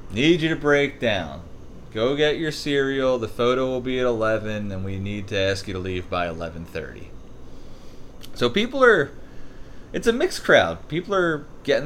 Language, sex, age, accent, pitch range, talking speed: English, male, 30-49, American, 95-130 Hz, 175 wpm